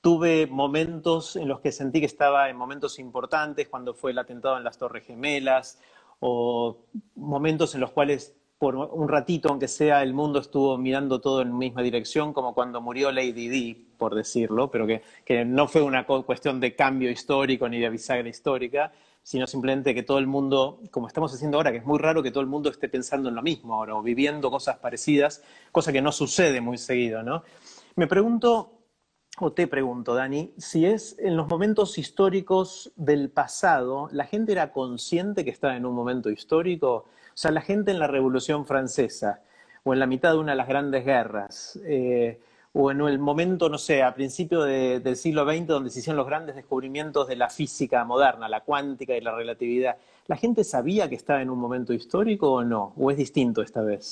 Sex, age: male, 30-49